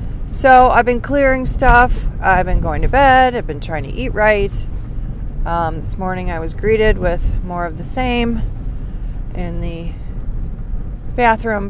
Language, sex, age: English, female, 30-49